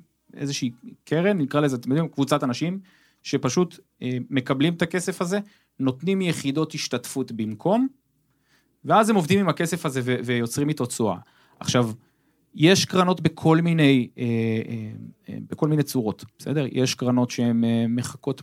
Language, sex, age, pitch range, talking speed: Hebrew, male, 30-49, 115-150 Hz, 125 wpm